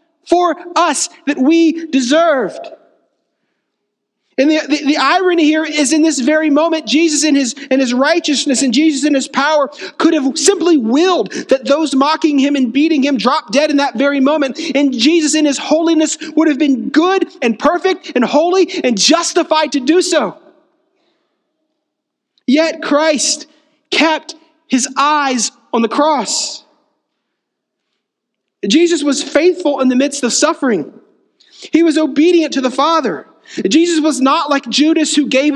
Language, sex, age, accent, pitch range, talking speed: English, male, 40-59, American, 275-325 Hz, 155 wpm